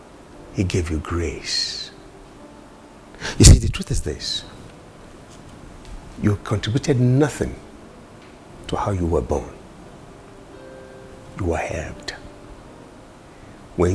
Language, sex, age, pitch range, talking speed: English, male, 60-79, 85-110 Hz, 95 wpm